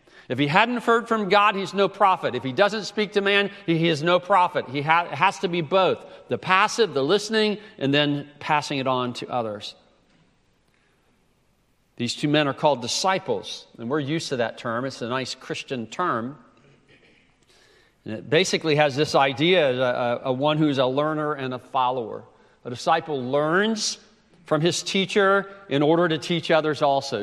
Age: 40-59